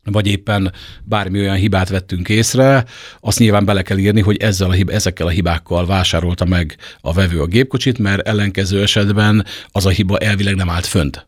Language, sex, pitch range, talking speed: Hungarian, male, 90-115 Hz, 170 wpm